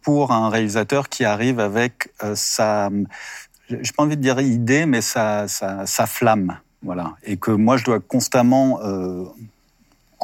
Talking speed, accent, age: 165 wpm, French, 50-69